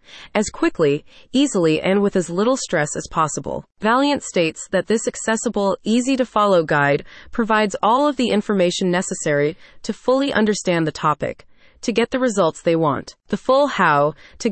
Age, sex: 30-49, female